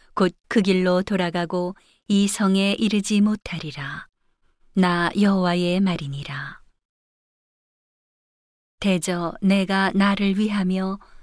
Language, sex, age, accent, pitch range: Korean, female, 40-59, native, 175-205 Hz